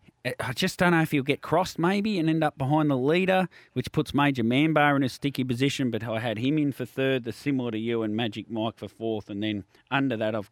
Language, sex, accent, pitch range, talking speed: English, male, Australian, 110-155 Hz, 250 wpm